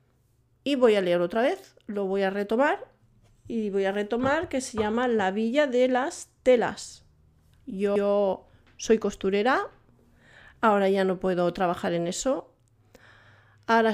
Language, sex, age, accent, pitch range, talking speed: Spanish, female, 40-59, Spanish, 175-230 Hz, 140 wpm